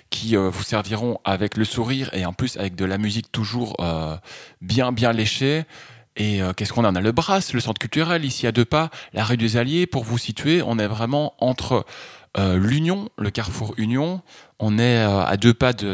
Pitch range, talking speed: 95-125 Hz, 200 wpm